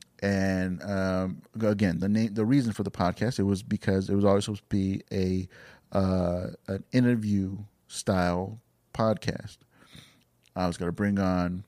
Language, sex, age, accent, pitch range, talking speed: English, male, 30-49, American, 90-110 Hz, 155 wpm